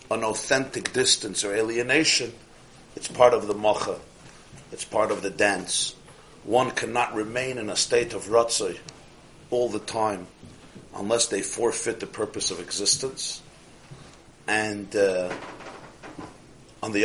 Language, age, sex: English, 50-69, male